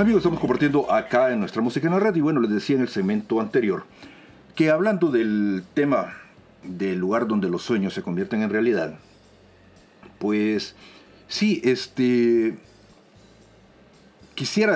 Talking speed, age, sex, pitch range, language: 140 wpm, 50-69, male, 105-150 Hz, Spanish